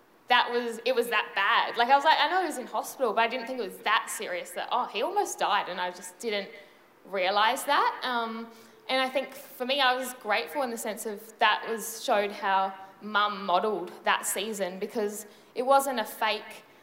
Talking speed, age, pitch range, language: 220 wpm, 10-29, 200-235 Hz, English